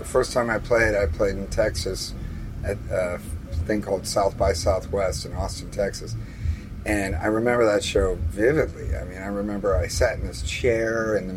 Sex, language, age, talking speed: male, English, 40-59, 190 wpm